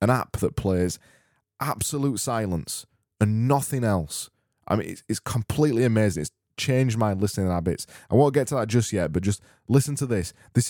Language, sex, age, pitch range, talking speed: English, male, 20-39, 95-110 Hz, 185 wpm